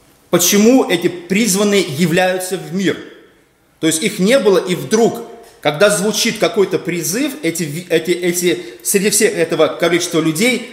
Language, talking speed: Russian, 140 wpm